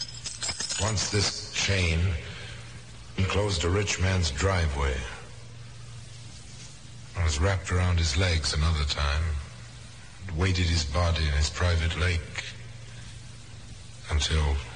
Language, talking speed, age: English, 100 wpm, 60-79